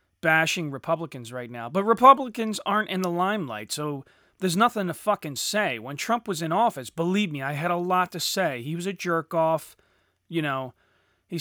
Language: English